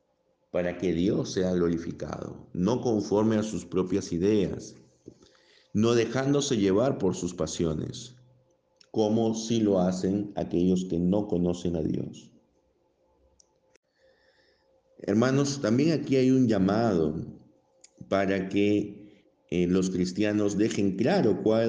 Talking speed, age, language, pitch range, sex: 115 wpm, 50-69, Spanish, 95-125 Hz, male